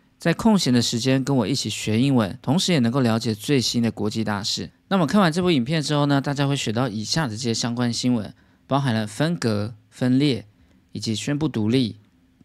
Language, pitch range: Chinese, 110-145 Hz